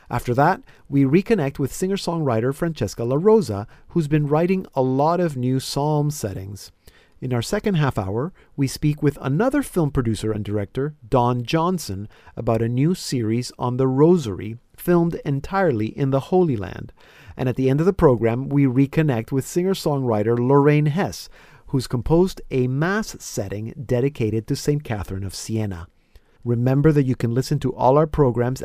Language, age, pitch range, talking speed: English, 40-59, 115-165 Hz, 165 wpm